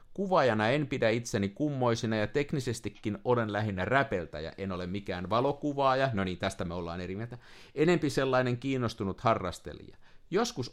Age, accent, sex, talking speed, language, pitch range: 50-69, native, male, 150 wpm, Finnish, 100-135 Hz